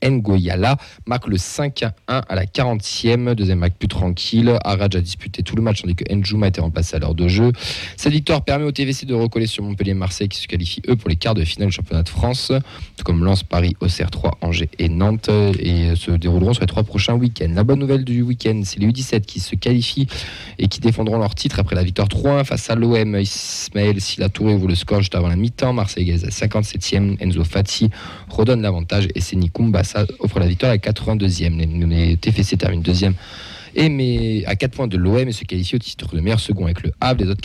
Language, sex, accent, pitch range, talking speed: French, male, French, 90-115 Hz, 215 wpm